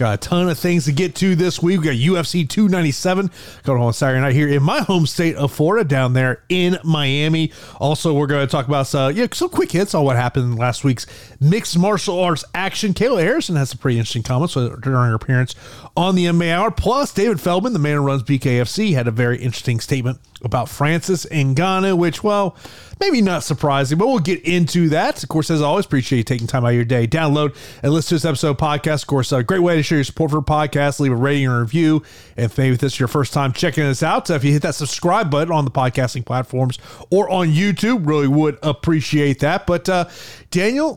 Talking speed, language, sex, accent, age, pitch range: 230 wpm, English, male, American, 30-49, 135-180 Hz